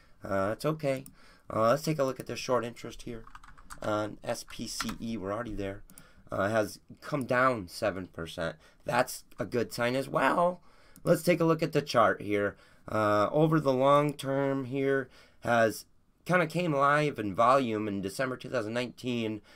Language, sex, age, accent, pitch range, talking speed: English, male, 30-49, American, 105-135 Hz, 165 wpm